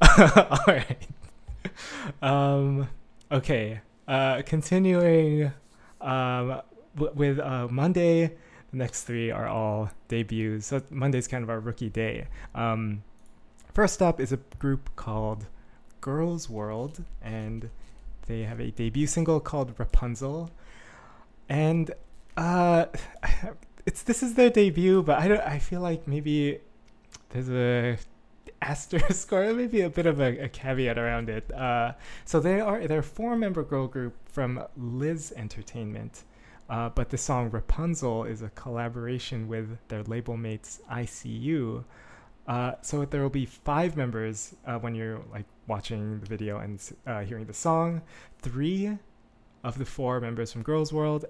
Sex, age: male, 20-39